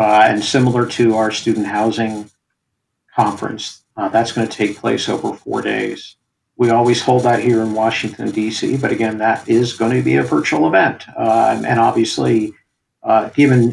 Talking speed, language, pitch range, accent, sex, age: 175 wpm, English, 110-130 Hz, American, male, 50-69